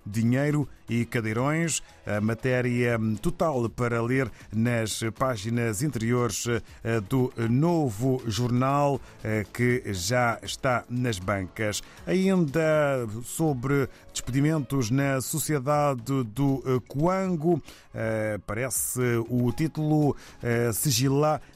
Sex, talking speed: male, 85 wpm